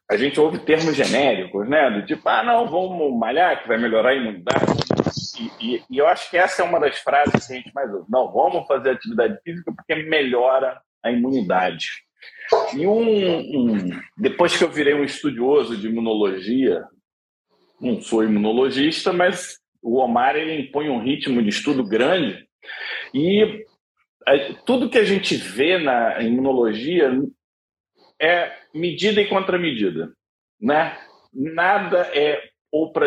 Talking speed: 145 wpm